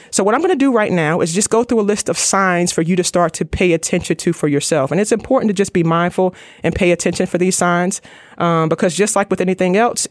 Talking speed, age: 275 wpm, 30-49